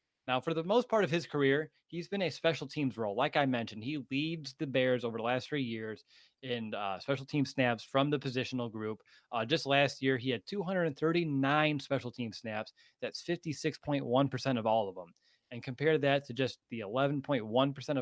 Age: 20-39